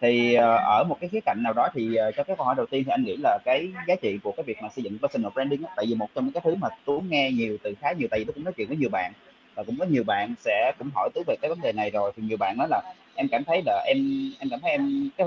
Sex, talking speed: male, 325 wpm